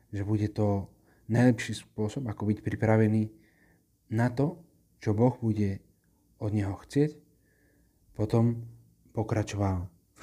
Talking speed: 110 wpm